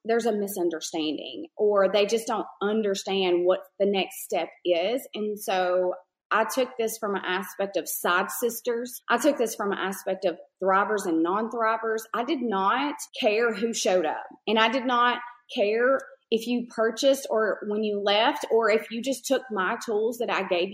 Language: English